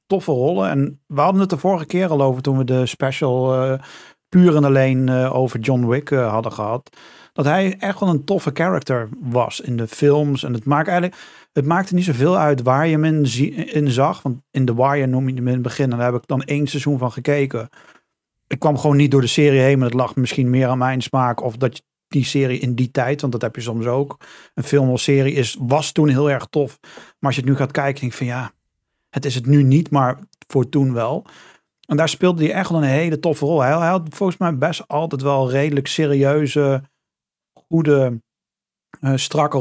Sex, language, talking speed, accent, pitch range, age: male, Dutch, 230 wpm, Dutch, 130-155 Hz, 40-59